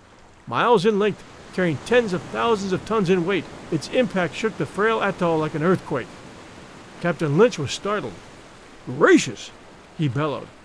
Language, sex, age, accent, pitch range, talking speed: English, male, 50-69, American, 150-205 Hz, 150 wpm